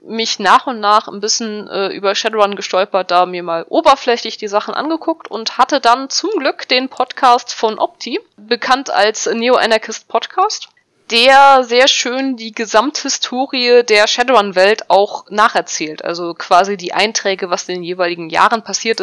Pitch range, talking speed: 205-265 Hz, 160 wpm